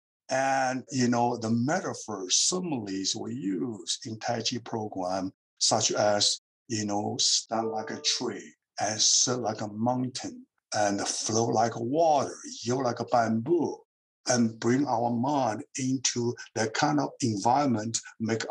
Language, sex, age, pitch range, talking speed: English, male, 60-79, 115-140 Hz, 140 wpm